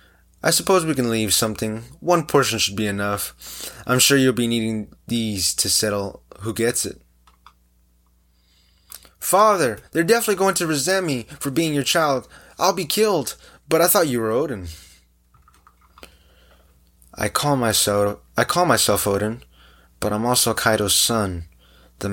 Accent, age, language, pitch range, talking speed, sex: American, 20-39, English, 85-125 Hz, 150 wpm, male